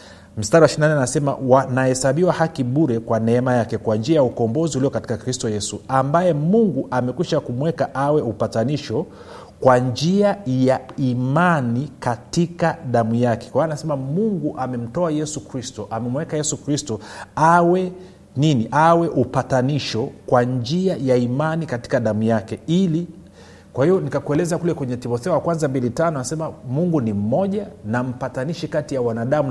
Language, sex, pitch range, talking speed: Swahili, male, 115-155 Hz, 135 wpm